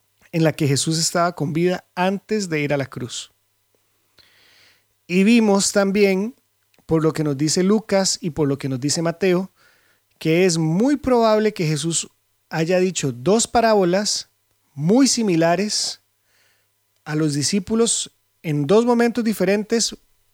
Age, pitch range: 30-49, 150-195 Hz